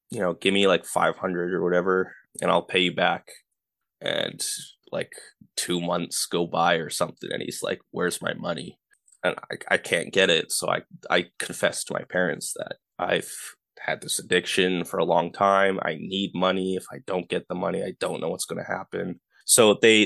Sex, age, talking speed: male, 20-39, 200 wpm